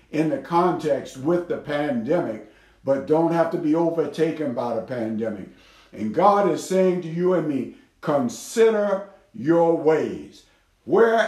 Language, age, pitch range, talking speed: English, 60-79, 130-185 Hz, 145 wpm